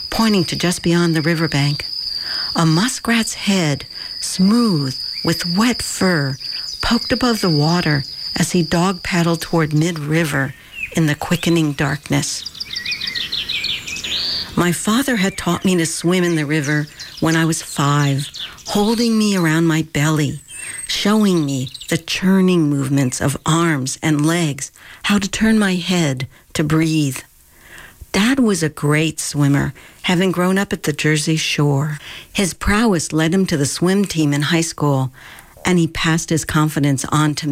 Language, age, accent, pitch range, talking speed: English, 60-79, American, 145-185 Hz, 145 wpm